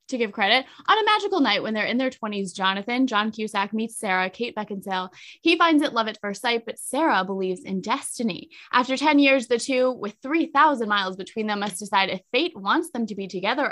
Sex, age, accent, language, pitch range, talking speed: female, 20-39, American, English, 195-260 Hz, 220 wpm